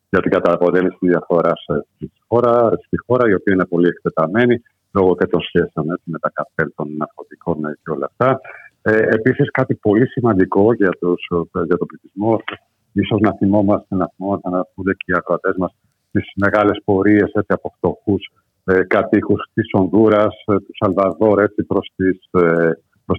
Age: 50-69